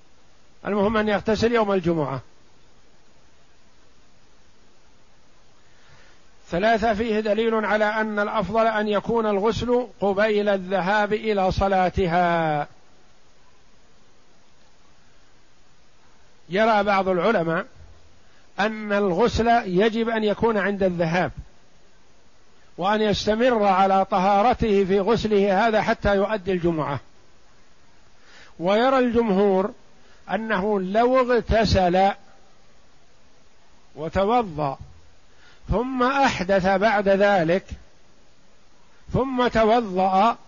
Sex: male